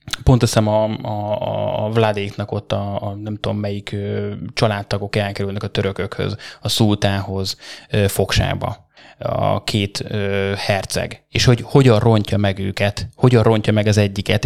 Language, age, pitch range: Hungarian, 20-39, 105-130 Hz